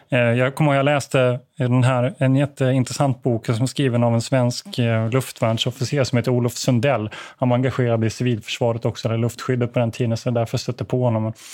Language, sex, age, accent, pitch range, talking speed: Swedish, male, 30-49, native, 120-140 Hz, 205 wpm